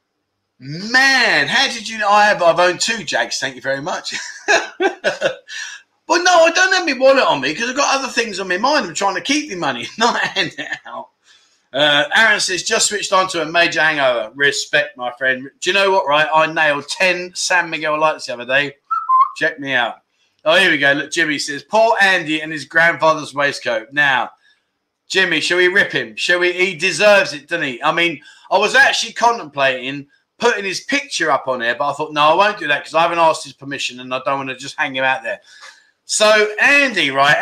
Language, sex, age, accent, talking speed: English, male, 30-49, British, 220 wpm